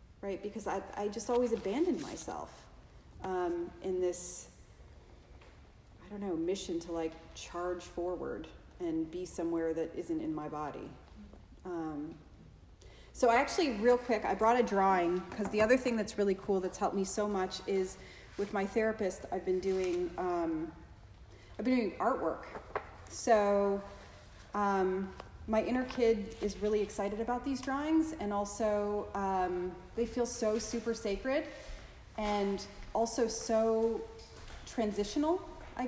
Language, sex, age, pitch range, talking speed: English, female, 30-49, 180-225 Hz, 140 wpm